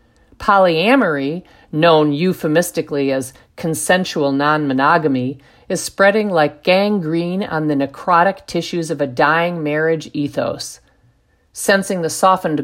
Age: 50-69